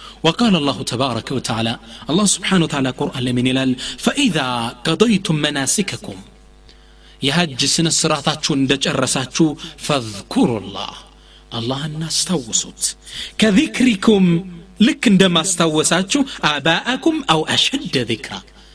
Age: 40-59